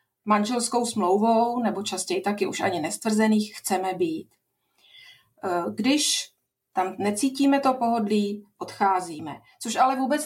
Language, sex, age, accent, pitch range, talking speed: Czech, female, 40-59, native, 195-235 Hz, 110 wpm